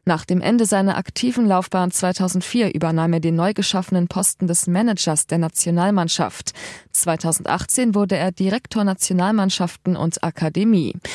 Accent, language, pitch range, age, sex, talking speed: German, German, 170-205 Hz, 20-39, female, 130 wpm